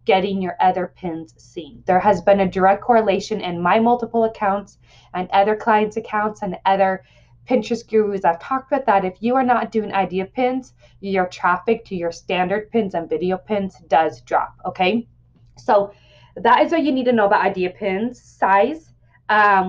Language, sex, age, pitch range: English, female, 20-39, 180-225 Hz